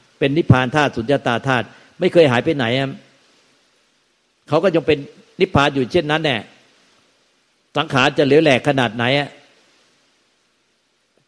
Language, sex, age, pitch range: Thai, male, 60-79, 120-150 Hz